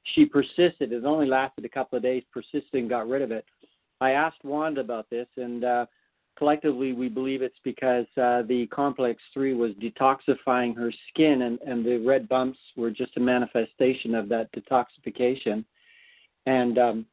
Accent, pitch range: American, 120-135 Hz